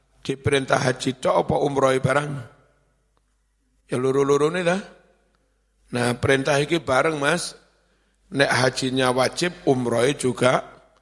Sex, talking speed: male, 110 wpm